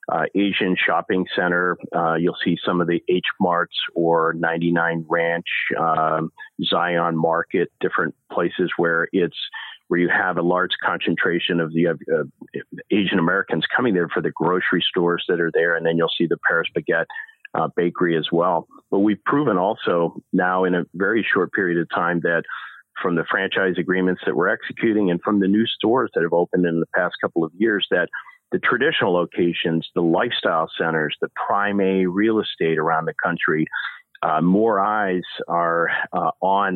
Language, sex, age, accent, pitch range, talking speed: English, male, 40-59, American, 85-95 Hz, 175 wpm